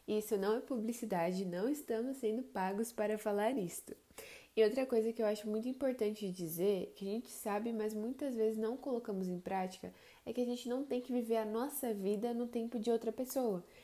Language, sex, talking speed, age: Portuguese, female, 205 wpm, 10-29